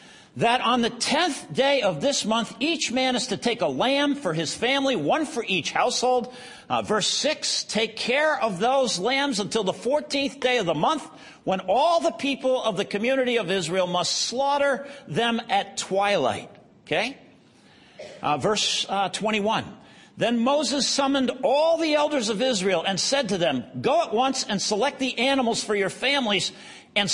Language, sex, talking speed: English, male, 175 wpm